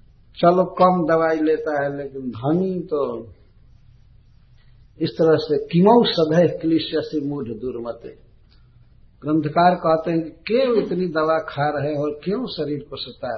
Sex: male